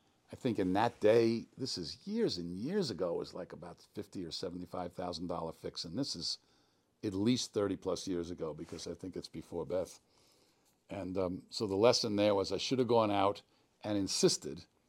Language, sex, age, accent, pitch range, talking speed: English, male, 50-69, American, 95-125 Hz, 195 wpm